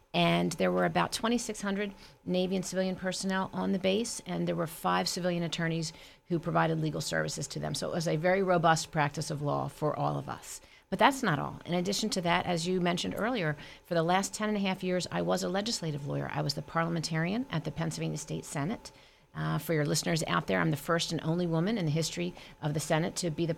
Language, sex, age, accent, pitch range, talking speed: English, female, 40-59, American, 155-185 Hz, 235 wpm